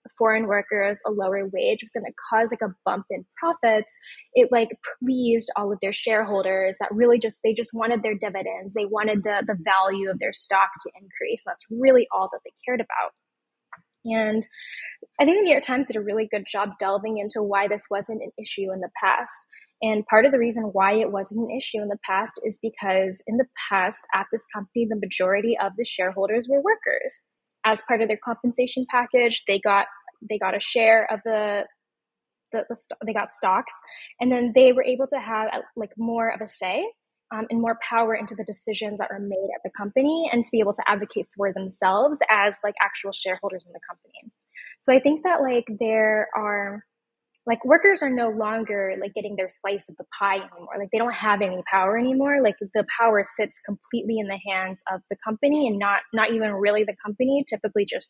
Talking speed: 210 wpm